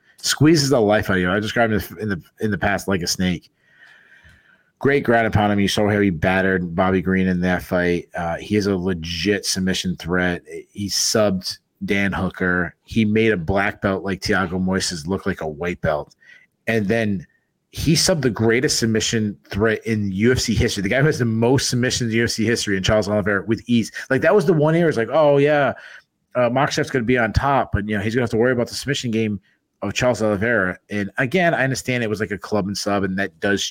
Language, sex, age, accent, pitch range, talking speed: English, male, 30-49, American, 95-120 Hz, 230 wpm